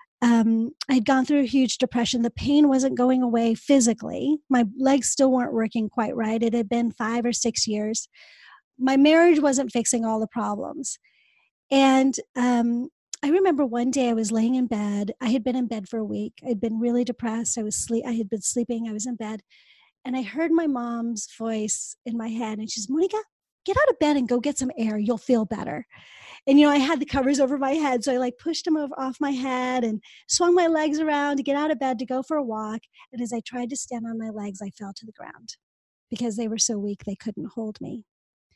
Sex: female